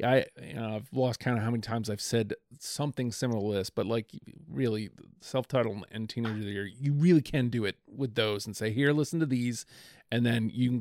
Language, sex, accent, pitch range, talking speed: English, male, American, 110-135 Hz, 220 wpm